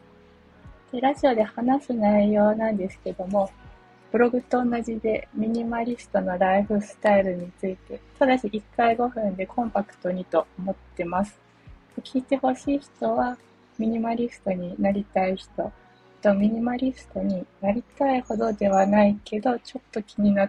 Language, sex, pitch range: Japanese, female, 190-235 Hz